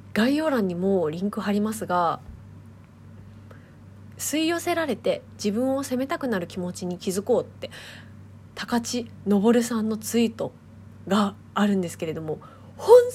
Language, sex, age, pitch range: Japanese, female, 20-39, 180-285 Hz